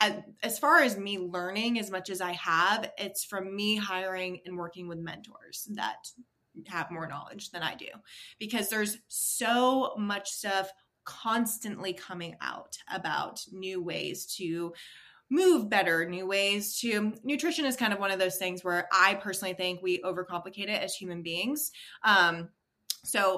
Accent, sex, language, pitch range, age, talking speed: American, female, English, 180-225 Hz, 20-39, 160 wpm